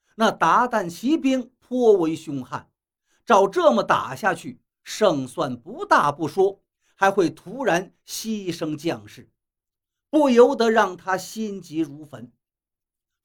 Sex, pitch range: male, 150-240 Hz